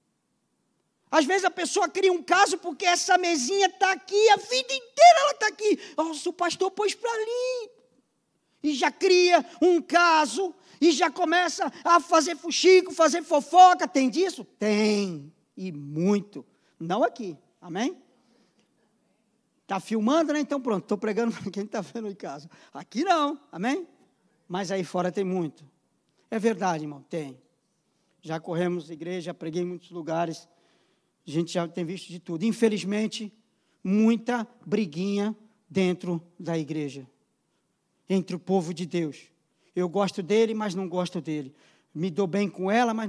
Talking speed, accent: 150 wpm, Brazilian